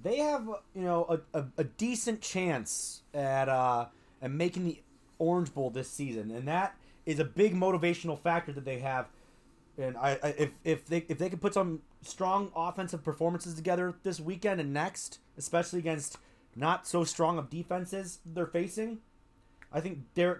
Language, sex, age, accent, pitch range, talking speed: English, male, 30-49, American, 120-175 Hz, 175 wpm